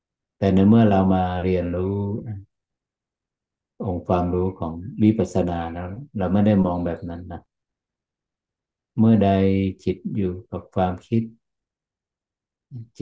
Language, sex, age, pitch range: Thai, male, 60-79, 90-105 Hz